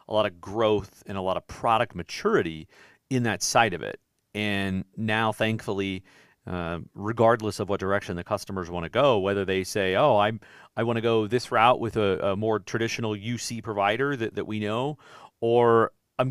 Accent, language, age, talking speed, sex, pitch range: American, English, 40-59, 195 wpm, male, 100-120 Hz